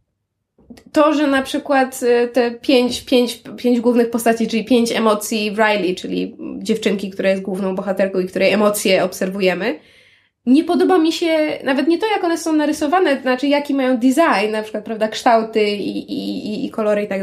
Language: Polish